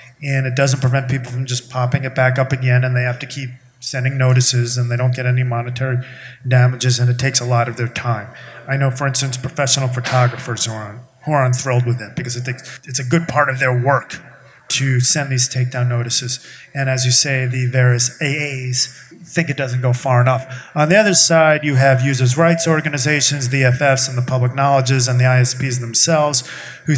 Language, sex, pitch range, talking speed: English, male, 125-145 Hz, 205 wpm